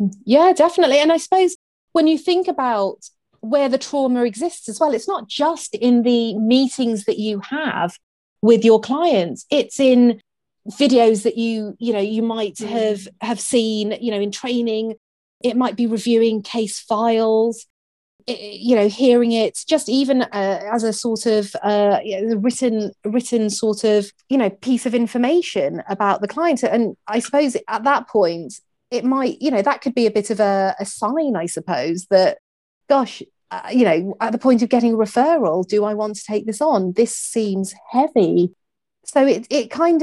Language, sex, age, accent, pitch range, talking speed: English, female, 30-49, British, 200-255 Hz, 180 wpm